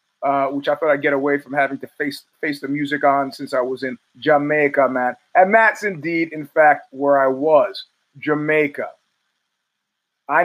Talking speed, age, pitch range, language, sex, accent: 180 wpm, 30-49, 140-175 Hz, English, male, American